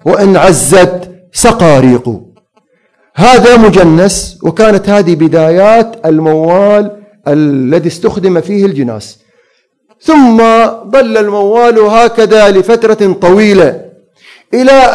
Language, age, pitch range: Arabic, 40-59, 190-240 Hz